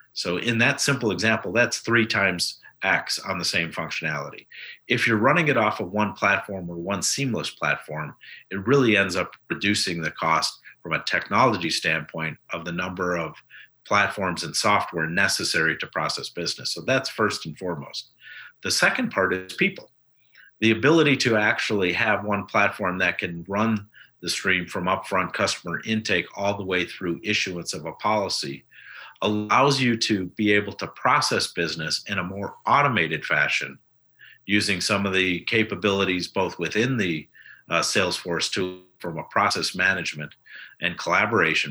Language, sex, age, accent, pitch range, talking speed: English, male, 50-69, American, 90-110 Hz, 160 wpm